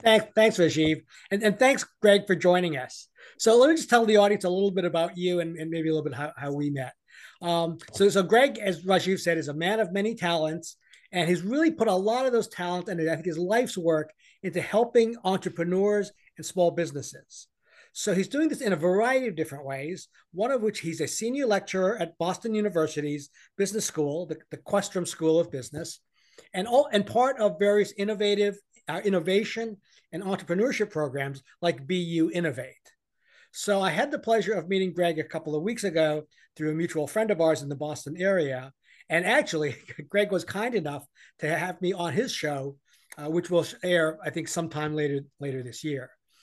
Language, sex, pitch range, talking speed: English, male, 155-210 Hz, 200 wpm